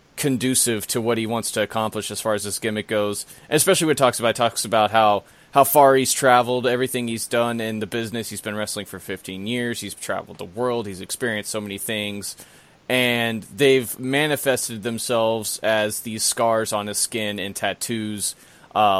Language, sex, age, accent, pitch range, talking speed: English, male, 30-49, American, 105-125 Hz, 185 wpm